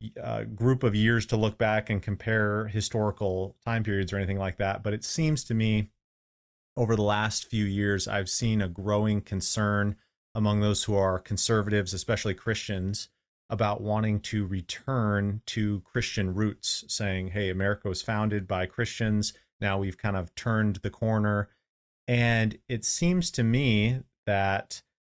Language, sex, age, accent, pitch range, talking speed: English, male, 30-49, American, 100-115 Hz, 155 wpm